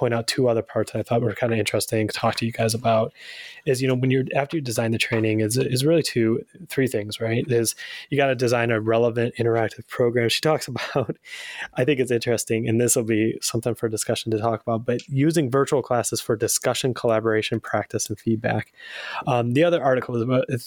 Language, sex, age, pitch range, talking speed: English, male, 20-39, 115-130 Hz, 225 wpm